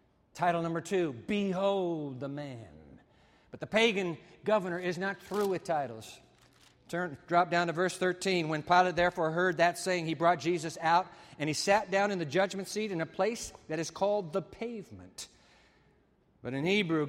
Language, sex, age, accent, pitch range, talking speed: English, male, 60-79, American, 130-180 Hz, 175 wpm